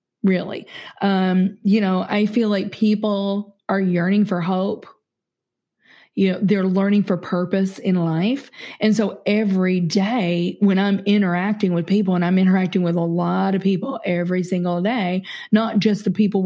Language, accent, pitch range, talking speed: English, American, 180-210 Hz, 160 wpm